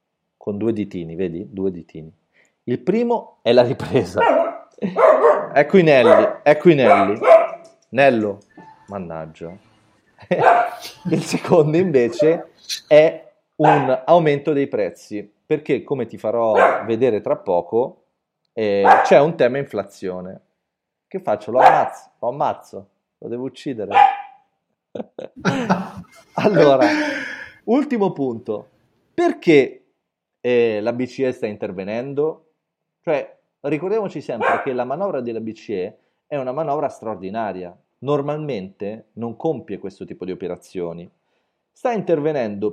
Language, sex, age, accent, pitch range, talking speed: Italian, male, 30-49, native, 100-170 Hz, 105 wpm